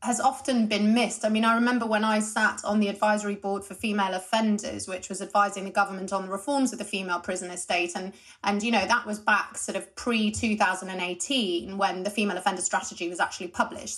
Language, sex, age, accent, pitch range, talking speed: English, female, 30-49, British, 195-240 Hz, 210 wpm